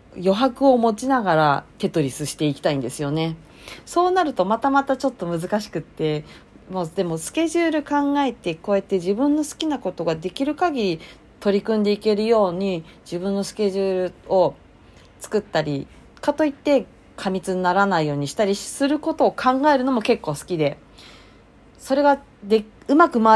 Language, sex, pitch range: Japanese, female, 160-215 Hz